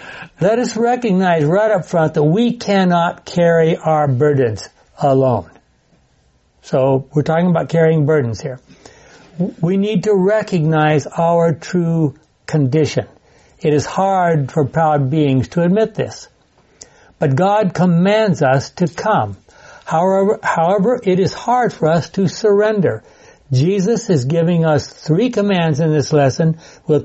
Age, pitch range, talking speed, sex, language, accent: 60-79, 145-190 Hz, 135 wpm, male, English, American